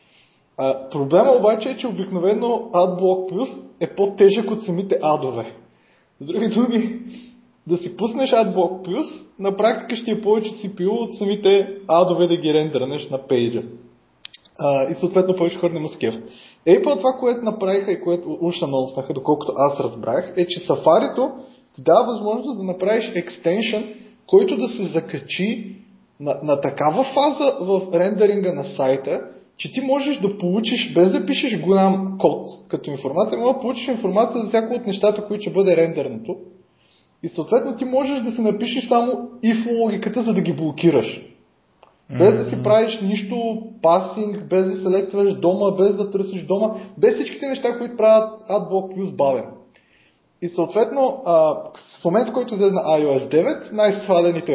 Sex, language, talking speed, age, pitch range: male, Bulgarian, 165 wpm, 20-39, 175-225 Hz